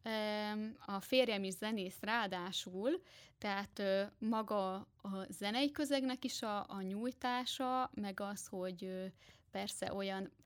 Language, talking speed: Hungarian, 110 wpm